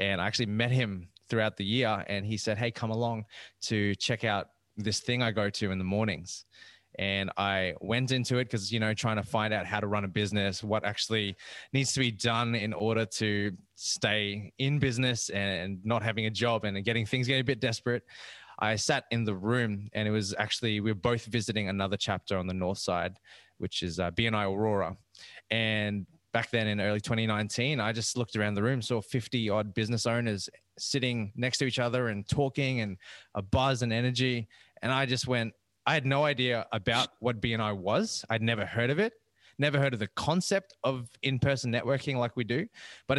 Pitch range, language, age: 105-125 Hz, English, 20-39